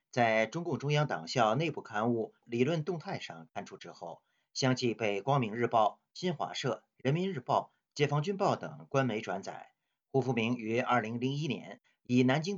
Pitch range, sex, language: 120-155 Hz, male, Chinese